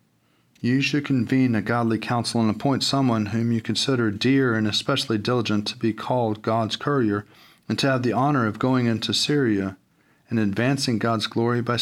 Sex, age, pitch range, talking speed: male, 40-59, 105-130 Hz, 180 wpm